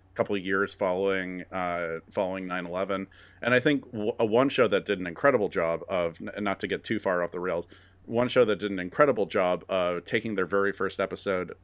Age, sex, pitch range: 30-49, male, 95-110 Hz